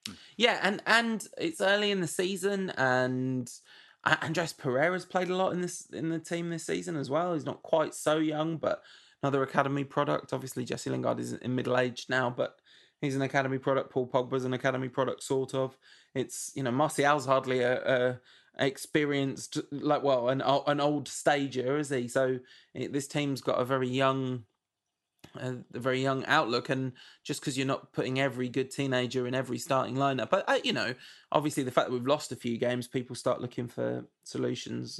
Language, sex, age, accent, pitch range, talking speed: English, male, 20-39, British, 125-145 Hz, 190 wpm